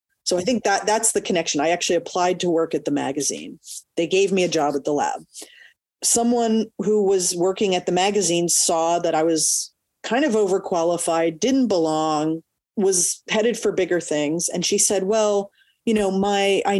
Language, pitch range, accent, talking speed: English, 170-215 Hz, American, 185 wpm